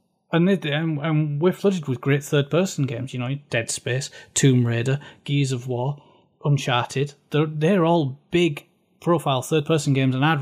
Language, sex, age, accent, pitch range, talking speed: English, male, 30-49, British, 130-160 Hz, 145 wpm